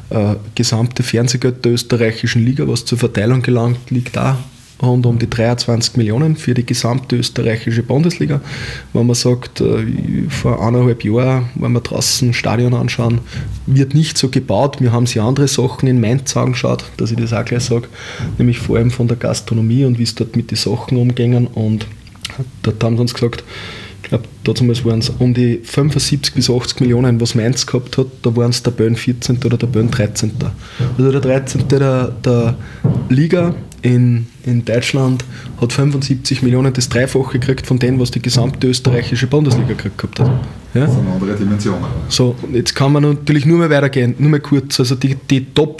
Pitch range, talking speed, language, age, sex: 120-135 Hz, 185 wpm, German, 20-39, male